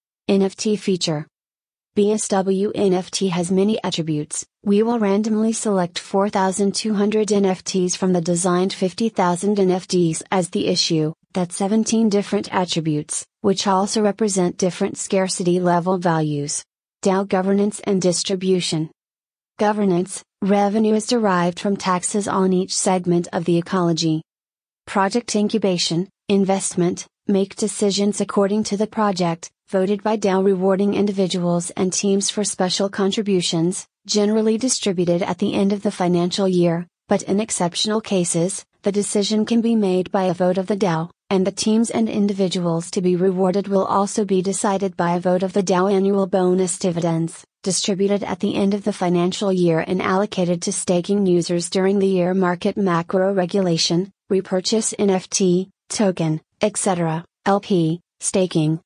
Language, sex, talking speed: English, female, 140 wpm